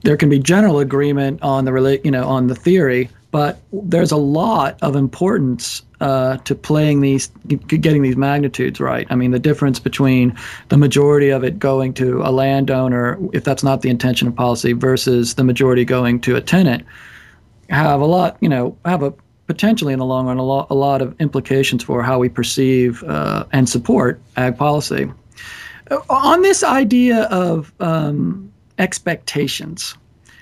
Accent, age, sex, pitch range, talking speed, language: American, 40-59, male, 130-155 Hz, 170 wpm, English